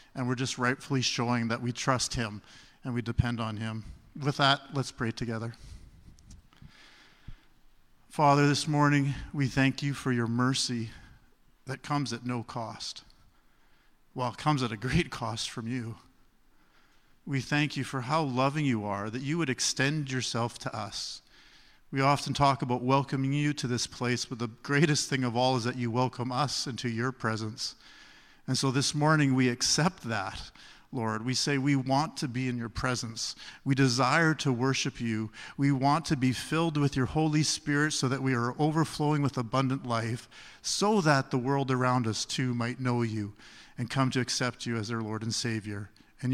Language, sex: English, male